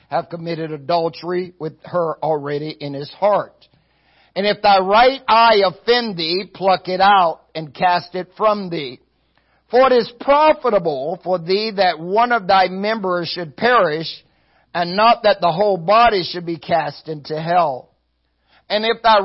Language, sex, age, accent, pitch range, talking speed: English, male, 60-79, American, 155-210 Hz, 160 wpm